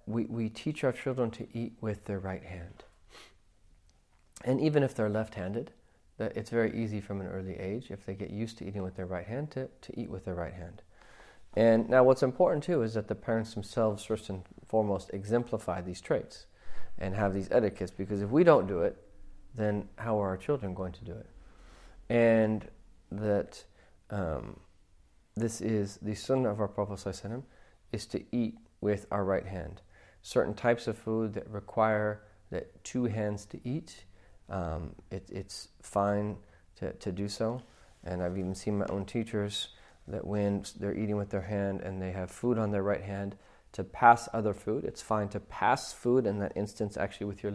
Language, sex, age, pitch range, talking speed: English, male, 40-59, 95-110 Hz, 190 wpm